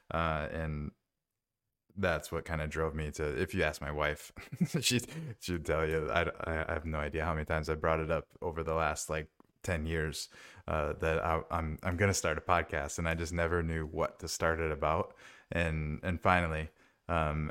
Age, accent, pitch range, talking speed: 20-39, American, 80-90 Hz, 200 wpm